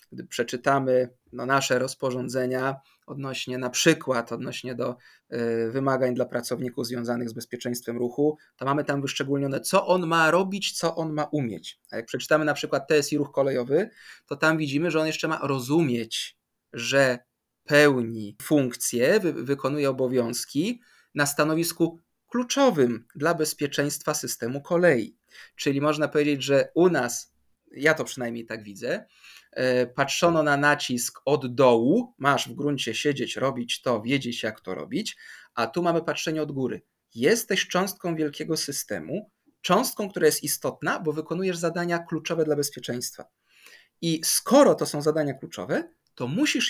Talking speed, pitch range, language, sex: 145 wpm, 125-165 Hz, Polish, male